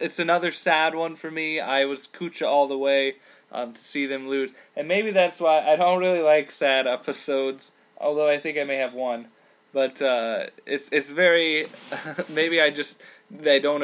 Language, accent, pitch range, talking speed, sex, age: English, American, 135-165 Hz, 190 wpm, male, 20-39